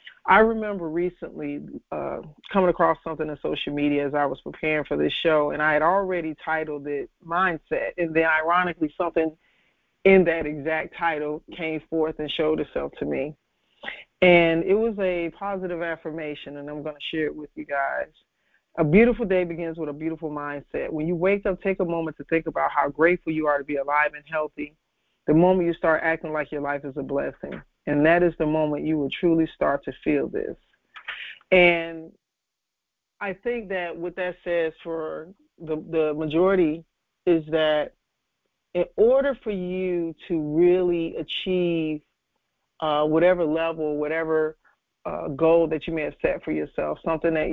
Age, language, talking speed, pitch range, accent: 40-59, English, 175 wpm, 150-175 Hz, American